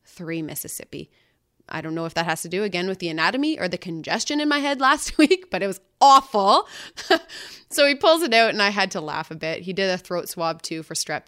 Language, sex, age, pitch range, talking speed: English, female, 20-39, 170-230 Hz, 245 wpm